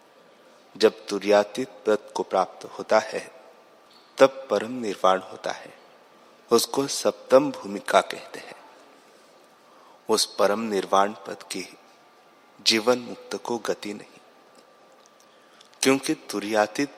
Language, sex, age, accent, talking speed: Hindi, male, 30-49, native, 105 wpm